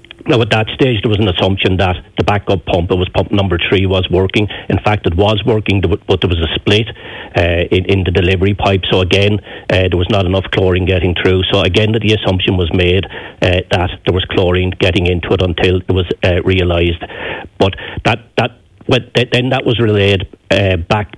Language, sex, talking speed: English, male, 210 wpm